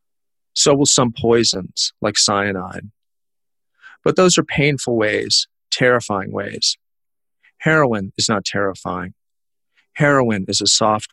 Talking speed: 115 wpm